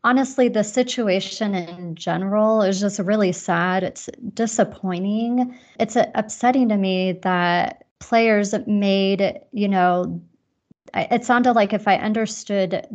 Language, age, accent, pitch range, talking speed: English, 30-49, American, 185-210 Hz, 120 wpm